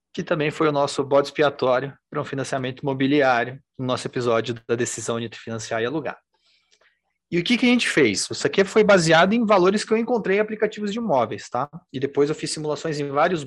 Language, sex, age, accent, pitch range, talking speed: Portuguese, male, 30-49, Brazilian, 125-180 Hz, 215 wpm